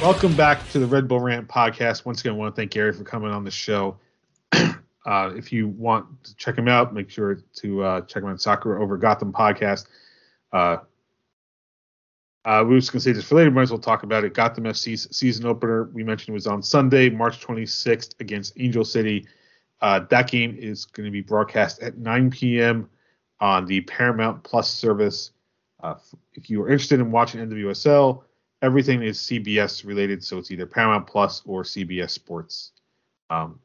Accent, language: American, English